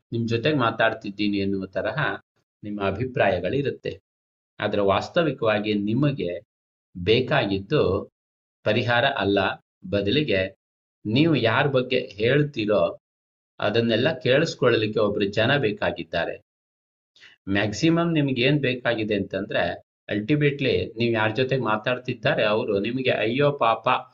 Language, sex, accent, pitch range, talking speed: Kannada, male, native, 105-135 Hz, 90 wpm